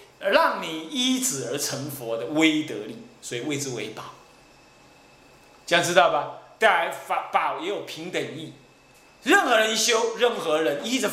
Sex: male